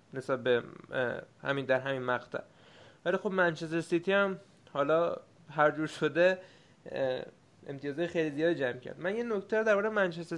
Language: Persian